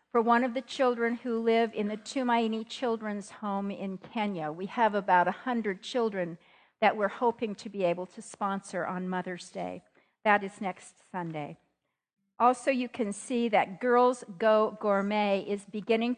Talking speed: 165 wpm